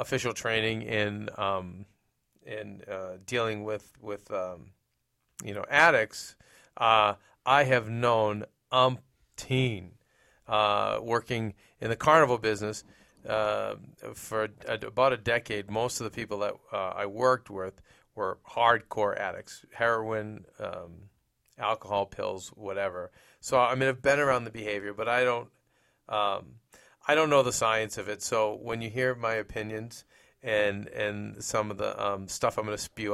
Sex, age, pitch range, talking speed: male, 40-59, 105-125 Hz, 150 wpm